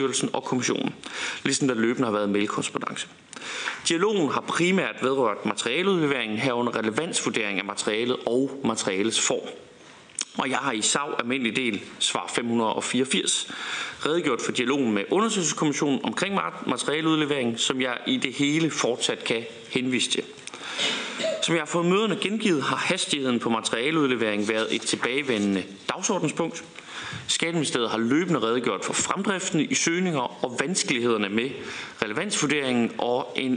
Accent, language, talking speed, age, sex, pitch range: native, Danish, 130 wpm, 30-49, male, 115-160 Hz